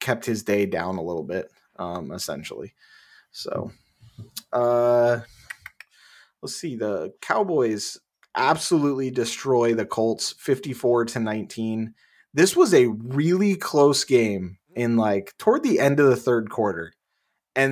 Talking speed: 130 wpm